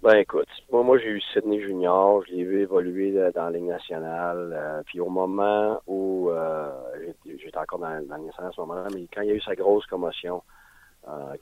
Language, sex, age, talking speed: French, male, 40-59, 205 wpm